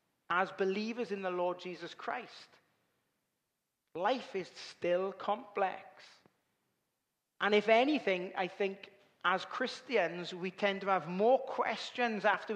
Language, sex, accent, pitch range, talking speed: English, male, British, 185-220 Hz, 120 wpm